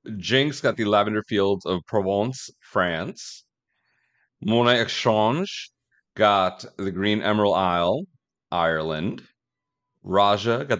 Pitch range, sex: 95-135 Hz, male